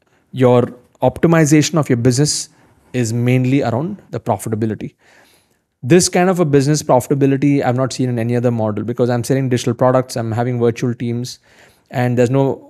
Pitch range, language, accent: 120-140 Hz, English, Indian